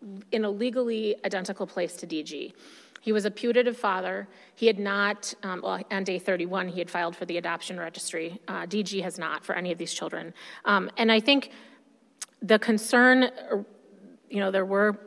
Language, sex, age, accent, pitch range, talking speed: English, female, 30-49, American, 180-210 Hz, 185 wpm